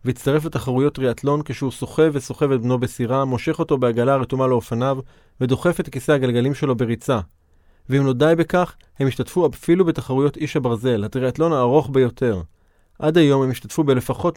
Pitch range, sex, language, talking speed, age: 120-150 Hz, male, Hebrew, 160 wpm, 30-49